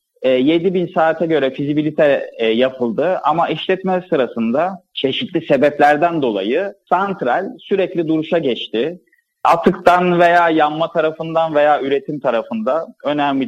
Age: 30-49